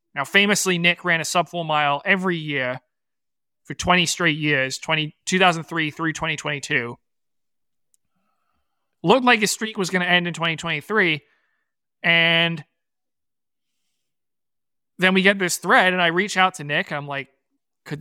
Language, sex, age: English, male, 30-49